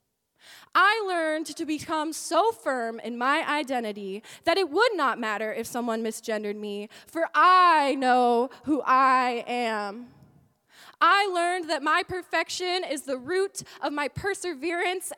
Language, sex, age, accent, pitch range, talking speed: English, female, 20-39, American, 275-360 Hz, 140 wpm